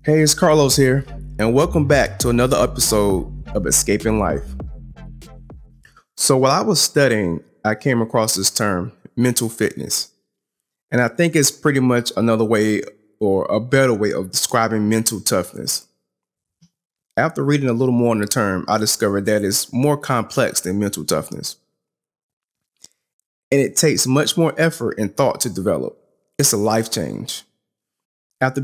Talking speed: 155 wpm